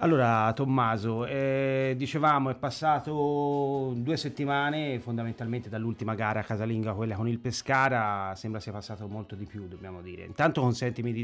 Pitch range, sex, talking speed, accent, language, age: 110-130 Hz, male, 145 wpm, native, Italian, 30-49